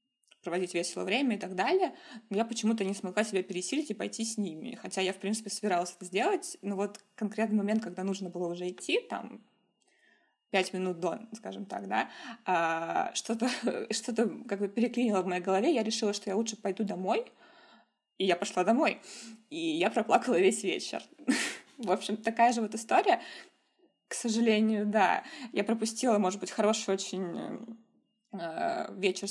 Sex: female